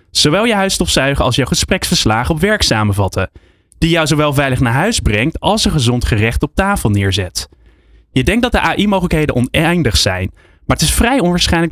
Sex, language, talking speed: male, Dutch, 180 wpm